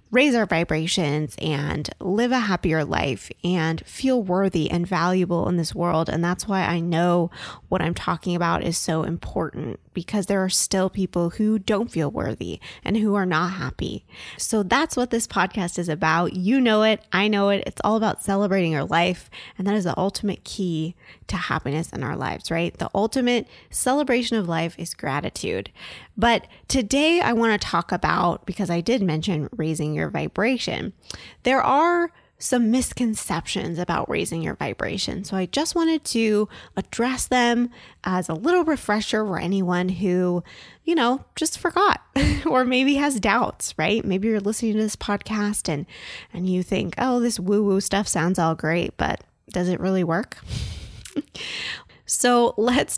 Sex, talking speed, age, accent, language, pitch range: female, 170 wpm, 20-39, American, English, 175-235 Hz